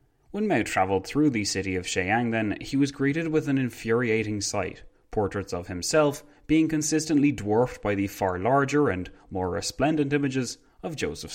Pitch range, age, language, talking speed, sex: 95-130 Hz, 20-39, English, 170 wpm, male